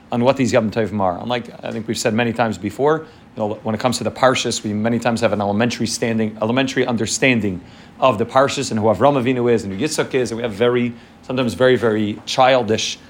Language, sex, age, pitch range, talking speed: English, male, 30-49, 110-130 Hz, 230 wpm